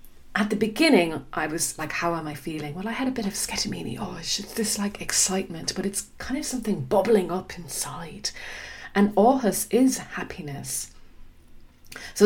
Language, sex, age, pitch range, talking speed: English, female, 30-49, 150-210 Hz, 175 wpm